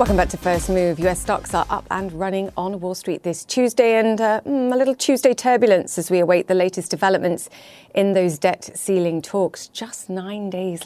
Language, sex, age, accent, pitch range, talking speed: English, female, 40-59, British, 160-190 Hz, 200 wpm